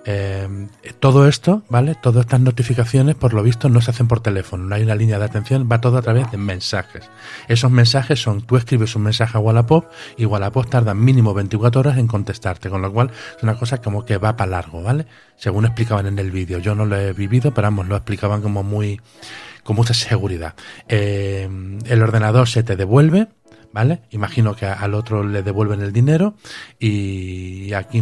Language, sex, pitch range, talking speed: Spanish, male, 100-120 Hz, 195 wpm